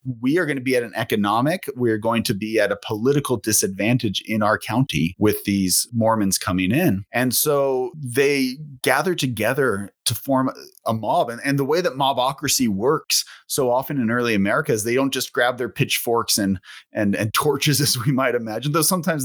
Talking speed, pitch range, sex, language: 195 wpm, 105-140 Hz, male, English